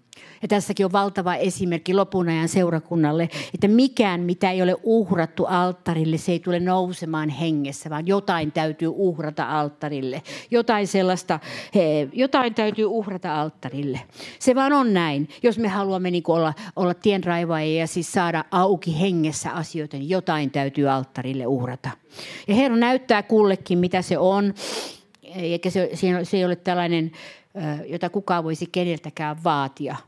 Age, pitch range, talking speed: 50-69, 155-195 Hz, 145 wpm